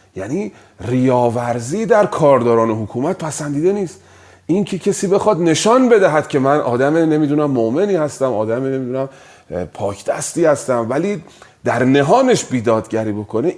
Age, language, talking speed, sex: 40-59, Persian, 125 wpm, male